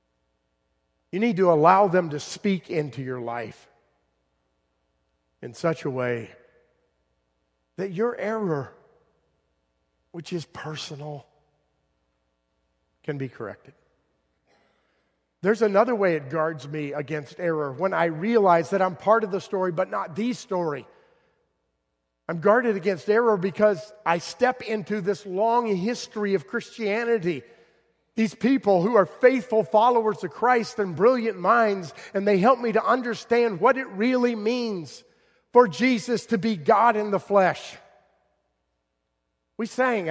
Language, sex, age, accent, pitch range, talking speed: English, male, 50-69, American, 140-220 Hz, 130 wpm